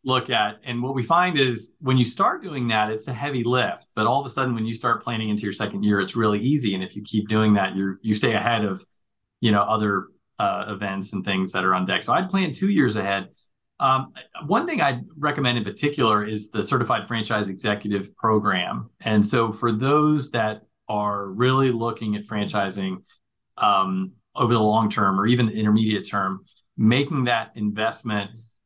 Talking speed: 200 wpm